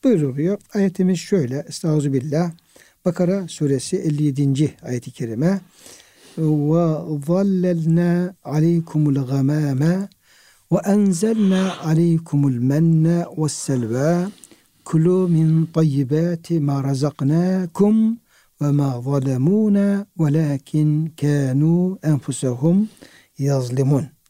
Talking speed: 45 wpm